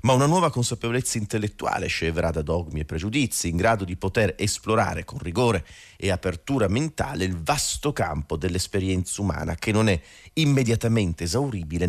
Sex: male